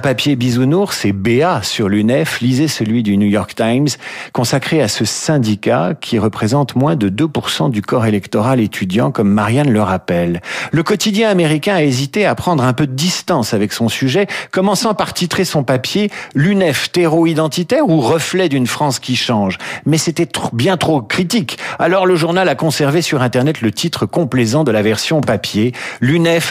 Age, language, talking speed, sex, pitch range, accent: 50-69, French, 175 wpm, male, 115-165 Hz, French